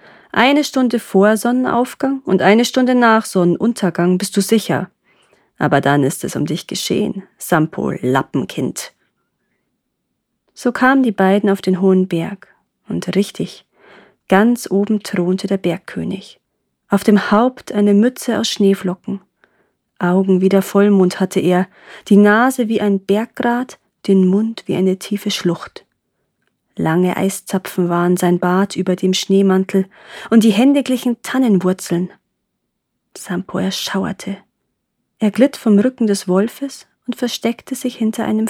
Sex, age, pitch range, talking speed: female, 30-49, 185-230 Hz, 130 wpm